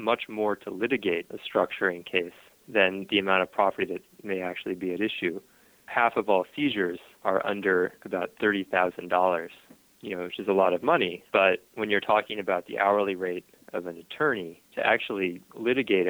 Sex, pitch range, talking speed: male, 90-105 Hz, 180 wpm